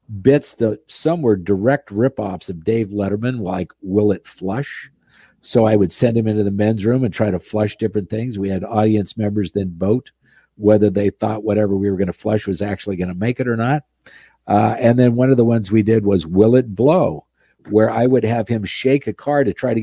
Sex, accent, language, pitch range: male, American, English, 100-120 Hz